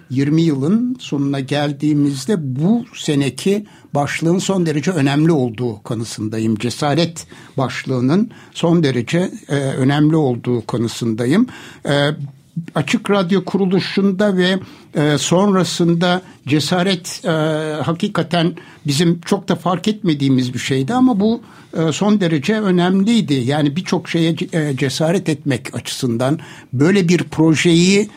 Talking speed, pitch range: 100 wpm, 135-180 Hz